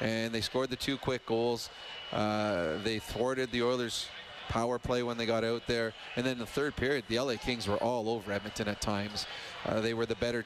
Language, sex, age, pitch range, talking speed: English, male, 30-49, 115-130 Hz, 220 wpm